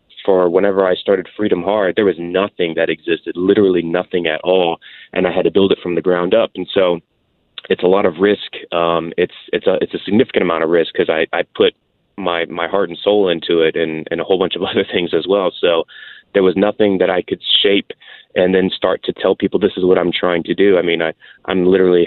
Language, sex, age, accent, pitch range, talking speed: English, male, 30-49, American, 85-100 Hz, 240 wpm